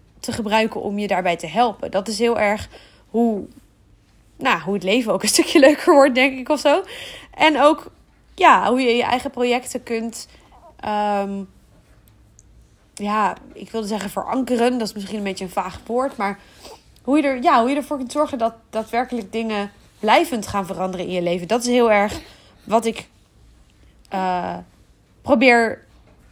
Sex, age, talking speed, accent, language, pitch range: female, 20-39, 170 wpm, Dutch, Dutch, 205-255 Hz